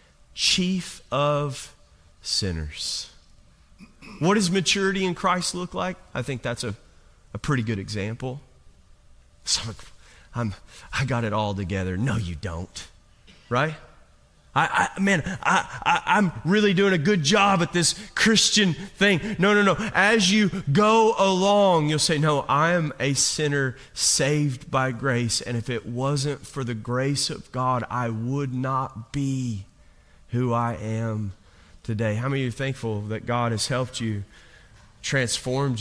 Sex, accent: male, American